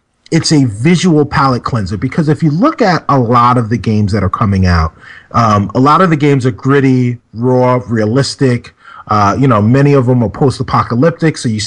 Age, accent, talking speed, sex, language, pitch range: 30-49, American, 205 wpm, male, English, 120-145 Hz